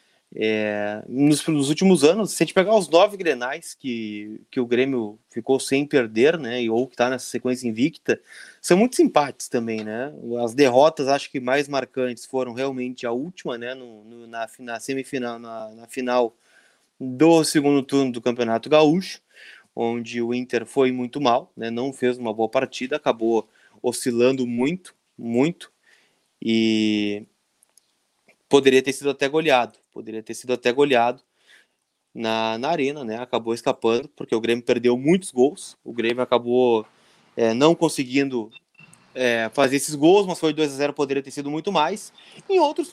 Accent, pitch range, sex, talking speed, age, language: Brazilian, 120-150 Hz, male, 165 wpm, 20-39, Portuguese